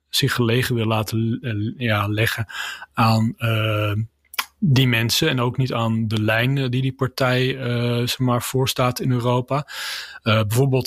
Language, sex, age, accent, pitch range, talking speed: Dutch, male, 30-49, Dutch, 115-130 Hz, 145 wpm